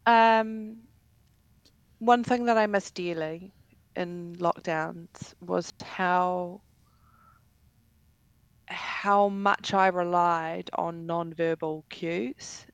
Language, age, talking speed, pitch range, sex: English, 20-39, 85 wpm, 160-190 Hz, female